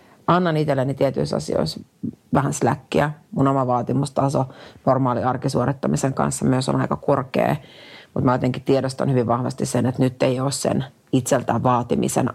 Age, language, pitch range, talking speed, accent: 40-59, Finnish, 120-145 Hz, 145 wpm, native